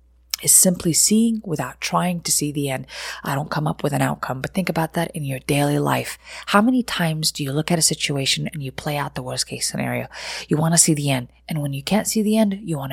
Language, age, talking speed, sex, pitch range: English, 30-49, 255 wpm, female, 145-180 Hz